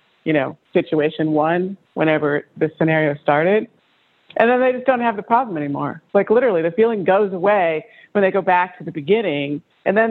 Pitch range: 160-210 Hz